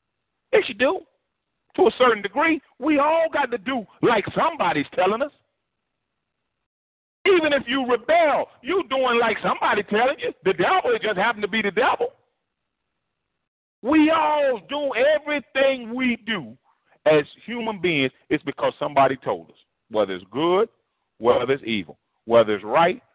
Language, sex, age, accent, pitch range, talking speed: English, male, 40-59, American, 180-300 Hz, 150 wpm